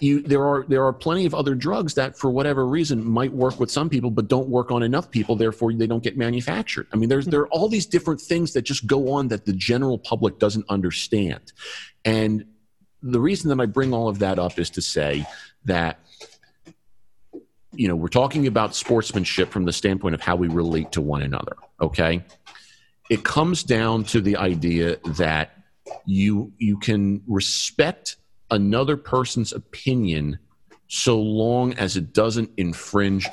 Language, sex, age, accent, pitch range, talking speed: English, male, 40-59, American, 85-120 Hz, 180 wpm